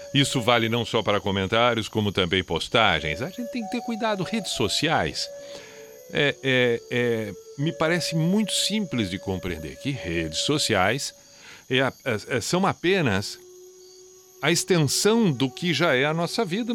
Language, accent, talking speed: Portuguese, Brazilian, 135 wpm